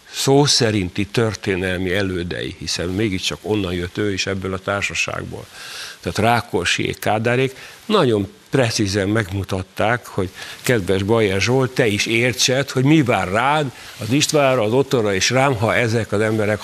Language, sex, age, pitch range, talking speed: Hungarian, male, 60-79, 95-125 Hz, 145 wpm